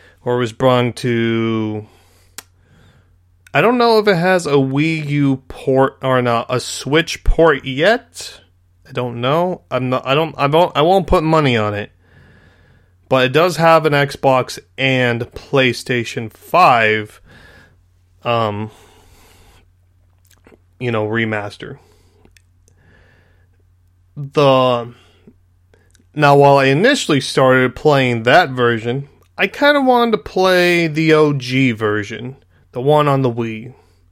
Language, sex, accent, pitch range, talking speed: English, male, American, 90-145 Hz, 125 wpm